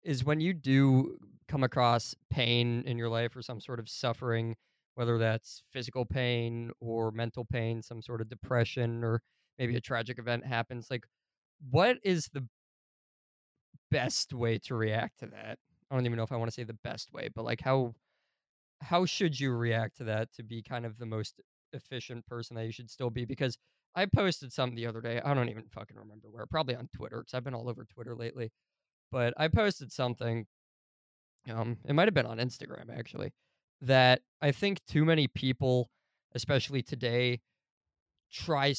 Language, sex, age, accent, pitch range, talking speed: English, male, 20-39, American, 115-140 Hz, 185 wpm